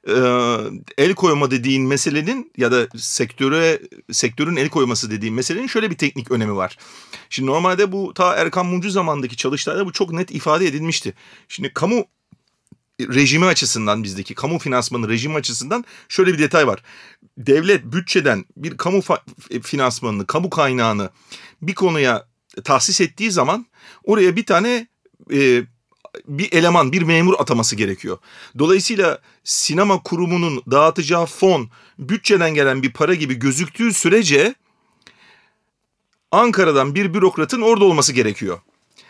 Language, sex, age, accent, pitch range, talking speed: Turkish, male, 40-59, native, 130-205 Hz, 130 wpm